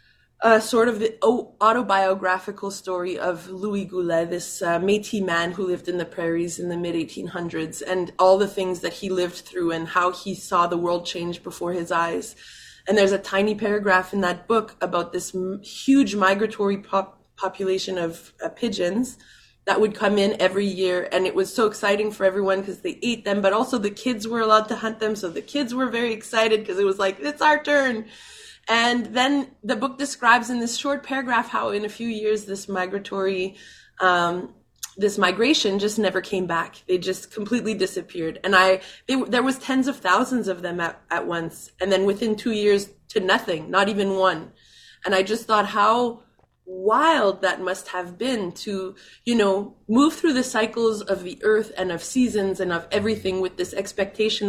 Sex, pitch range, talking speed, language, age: female, 185-220 Hz, 190 wpm, English, 20-39